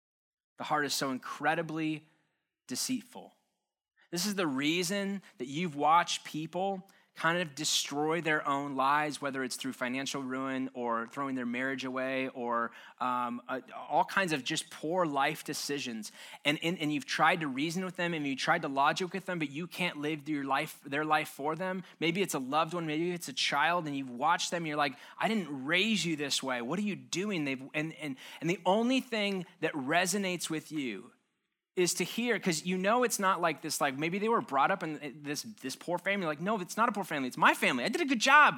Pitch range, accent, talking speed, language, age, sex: 150-200 Hz, American, 215 wpm, English, 20-39, male